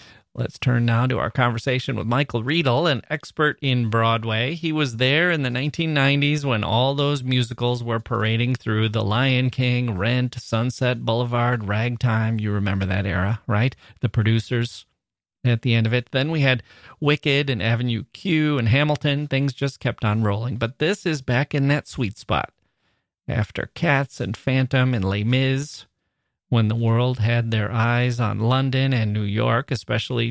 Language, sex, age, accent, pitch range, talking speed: English, male, 30-49, American, 115-140 Hz, 170 wpm